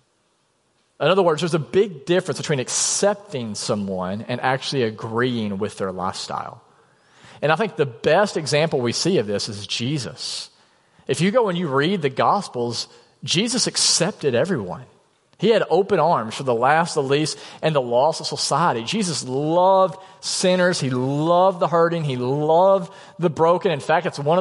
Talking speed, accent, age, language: 165 wpm, American, 40-59, English